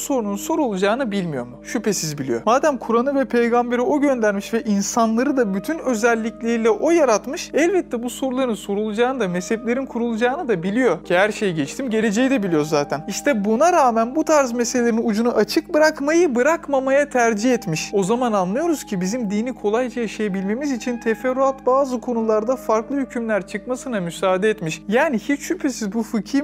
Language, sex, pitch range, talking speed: Turkish, male, 205-265 Hz, 160 wpm